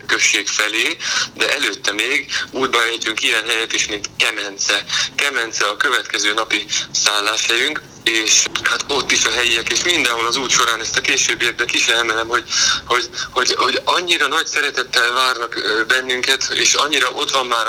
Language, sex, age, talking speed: Hungarian, male, 20-39, 160 wpm